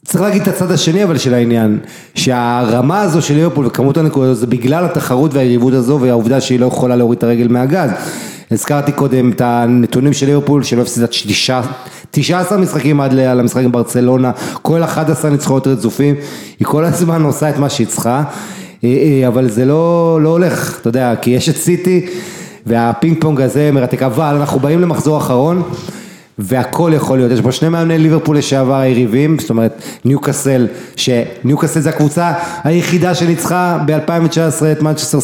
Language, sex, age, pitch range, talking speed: English, male, 30-49, 125-160 Hz, 150 wpm